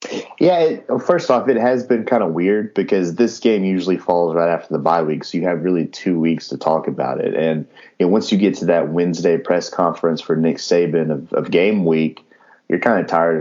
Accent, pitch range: American, 80-90 Hz